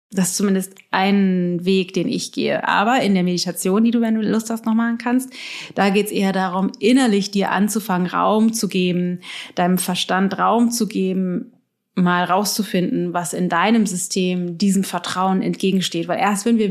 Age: 30-49